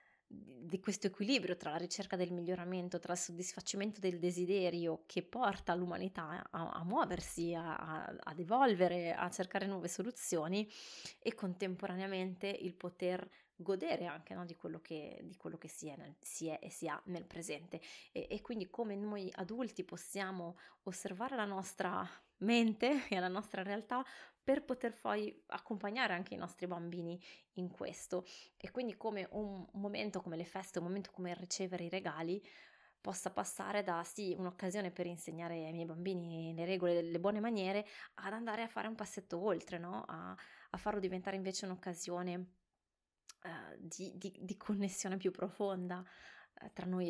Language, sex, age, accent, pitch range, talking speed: Italian, female, 20-39, native, 175-200 Hz, 165 wpm